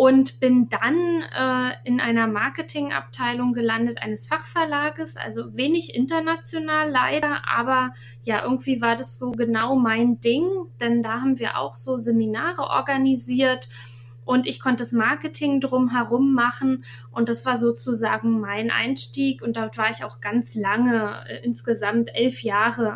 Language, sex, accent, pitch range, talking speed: German, female, German, 220-255 Hz, 145 wpm